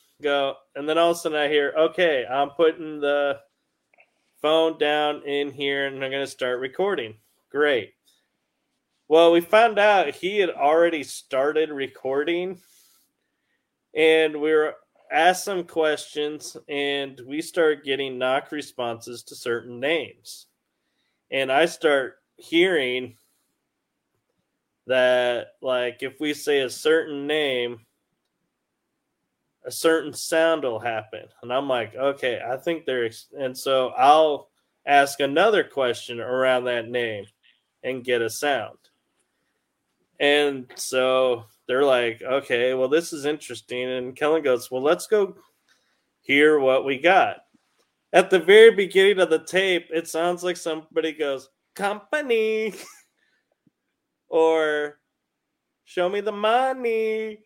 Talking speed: 125 wpm